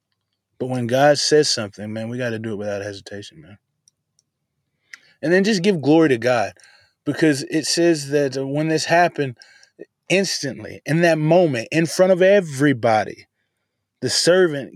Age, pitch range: 20-39, 115-155 Hz